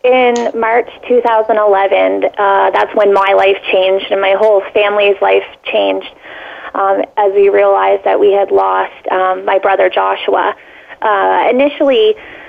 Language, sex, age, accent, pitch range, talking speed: English, female, 20-39, American, 200-260 Hz, 140 wpm